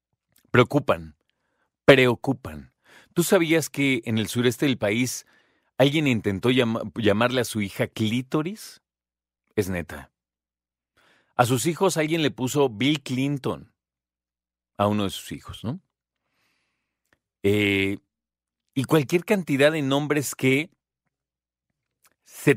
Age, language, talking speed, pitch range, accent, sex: 40-59, Spanish, 110 wpm, 100-145 Hz, Mexican, male